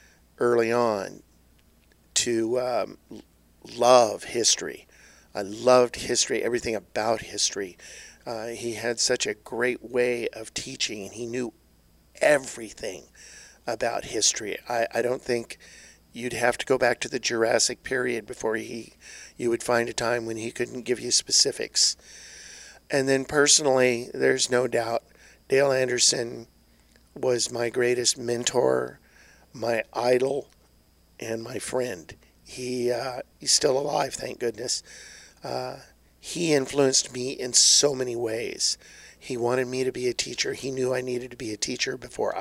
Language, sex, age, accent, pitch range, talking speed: English, male, 50-69, American, 115-130 Hz, 145 wpm